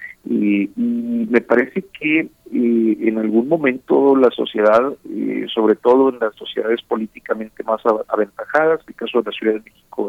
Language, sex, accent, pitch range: Spanish, male, Mexican, 100-130 Hz